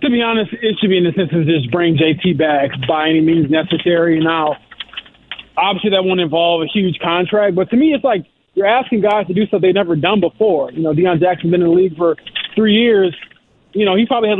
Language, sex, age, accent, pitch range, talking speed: English, male, 20-39, American, 170-205 Hz, 240 wpm